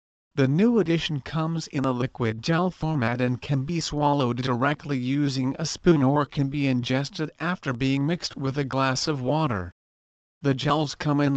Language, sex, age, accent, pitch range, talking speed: English, male, 50-69, American, 130-155 Hz, 175 wpm